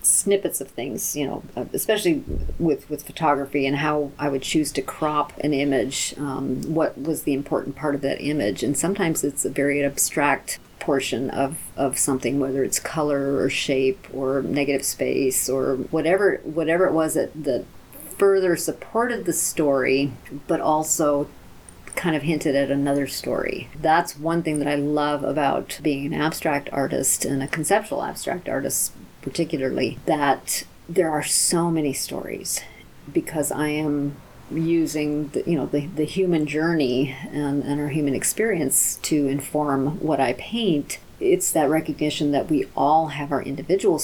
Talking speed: 160 wpm